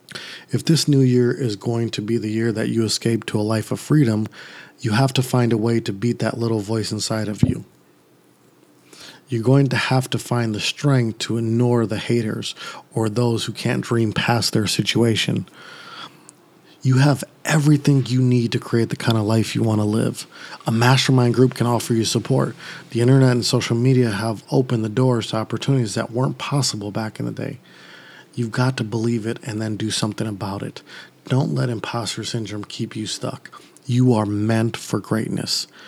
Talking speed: 190 wpm